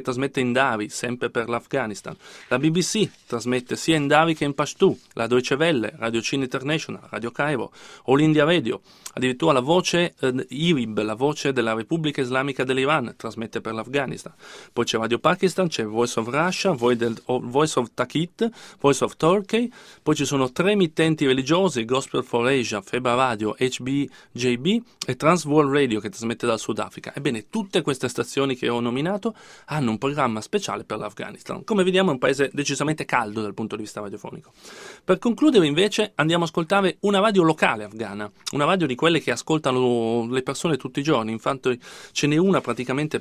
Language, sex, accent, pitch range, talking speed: Italian, male, native, 120-160 Hz, 175 wpm